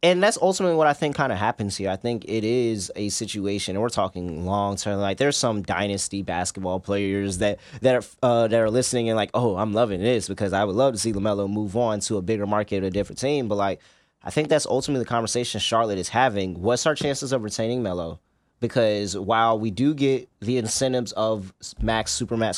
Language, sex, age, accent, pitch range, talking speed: English, male, 20-39, American, 100-125 Hz, 220 wpm